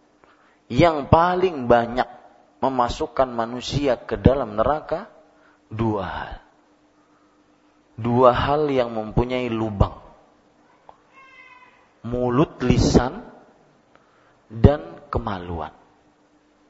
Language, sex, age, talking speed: Malay, male, 40-59, 70 wpm